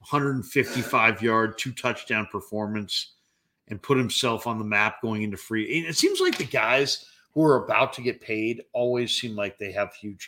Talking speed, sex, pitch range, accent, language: 175 wpm, male, 105-125 Hz, American, English